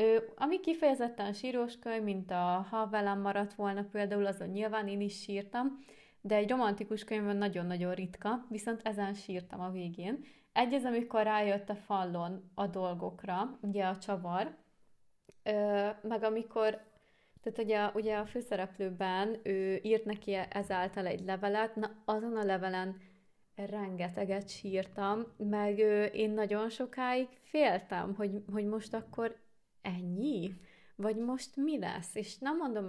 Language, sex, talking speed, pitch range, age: Hungarian, female, 130 wpm, 190-225 Hz, 20-39